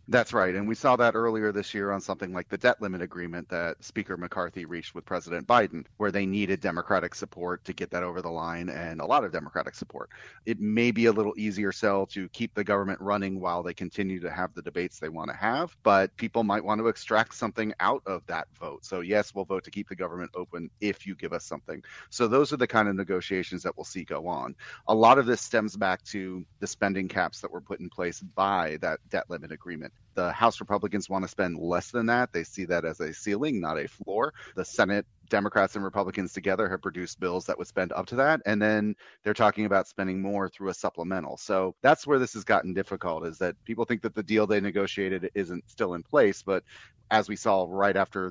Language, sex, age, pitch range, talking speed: English, male, 30-49, 90-105 Hz, 235 wpm